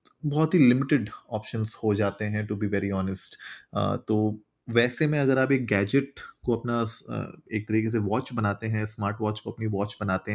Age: 20-39